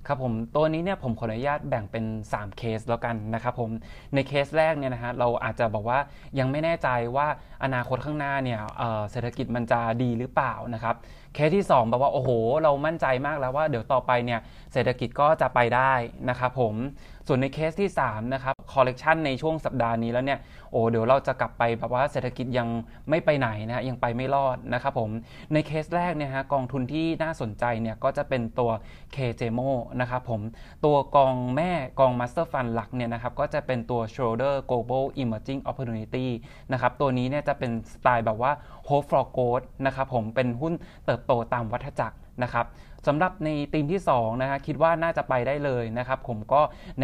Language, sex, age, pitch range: Thai, male, 20-39, 120-140 Hz